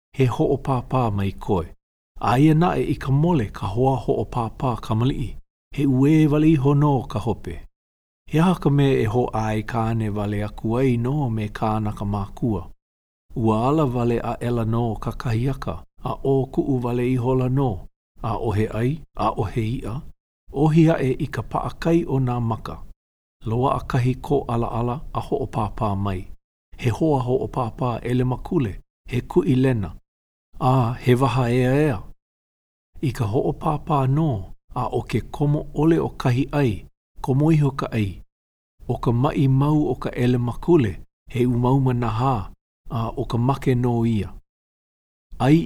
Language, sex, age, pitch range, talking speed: English, male, 50-69, 105-135 Hz, 160 wpm